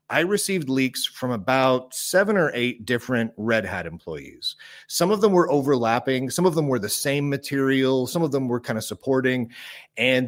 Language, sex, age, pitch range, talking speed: English, male, 30-49, 115-145 Hz, 185 wpm